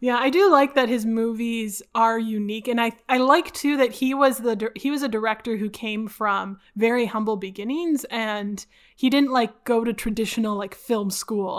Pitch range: 205-245 Hz